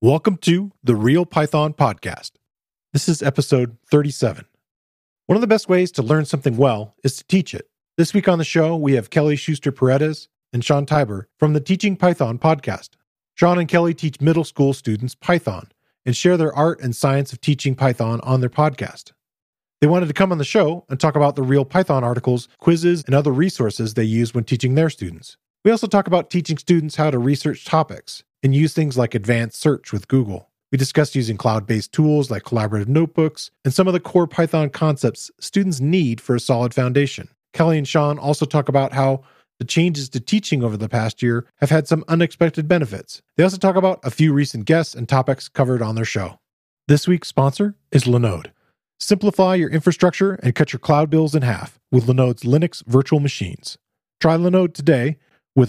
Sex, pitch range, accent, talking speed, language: male, 125-165 Hz, American, 195 wpm, English